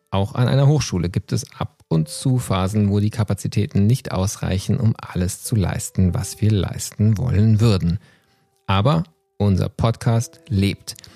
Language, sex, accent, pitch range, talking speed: German, male, German, 100-135 Hz, 150 wpm